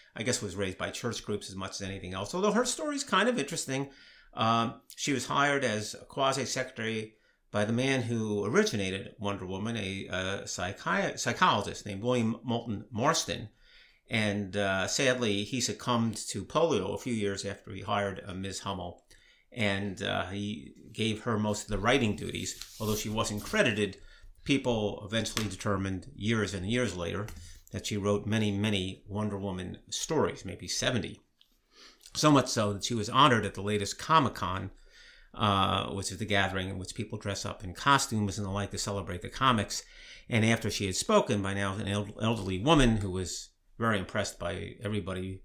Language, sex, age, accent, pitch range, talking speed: English, male, 50-69, American, 100-115 Hz, 175 wpm